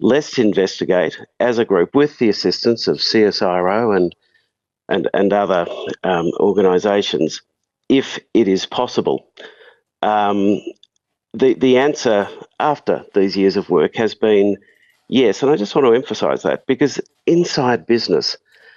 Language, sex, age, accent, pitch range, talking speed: English, male, 50-69, Australian, 100-120 Hz, 135 wpm